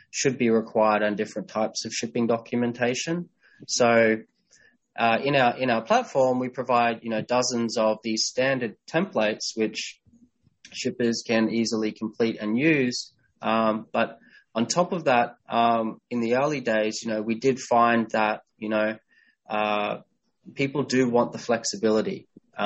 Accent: Australian